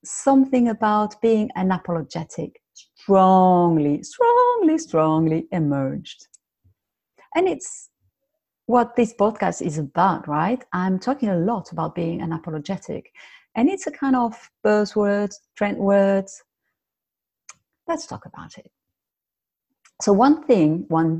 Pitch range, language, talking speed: 165-250 Hz, English, 115 wpm